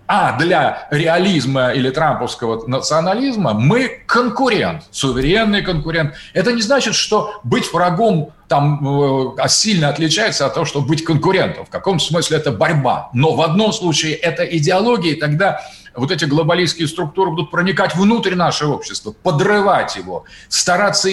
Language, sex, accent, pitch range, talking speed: Russian, male, native, 145-195 Hz, 140 wpm